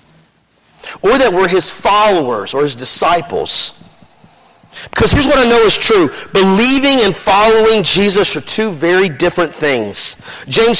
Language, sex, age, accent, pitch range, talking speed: English, male, 40-59, American, 155-215 Hz, 140 wpm